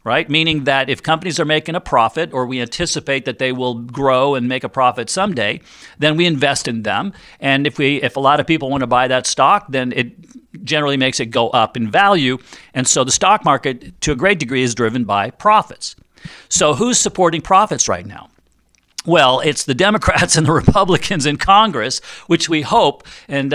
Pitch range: 130-170 Hz